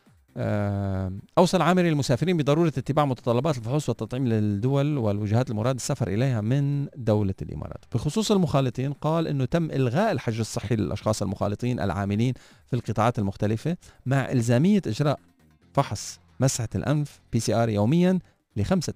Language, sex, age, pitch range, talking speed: Arabic, male, 40-59, 100-130 Hz, 125 wpm